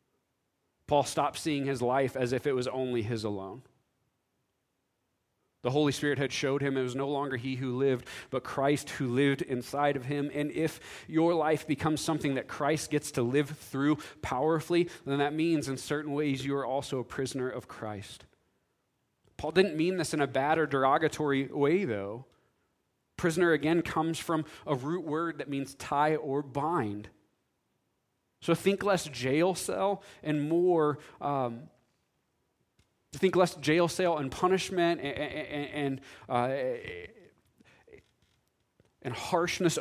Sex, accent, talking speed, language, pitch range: male, American, 150 wpm, English, 130-155 Hz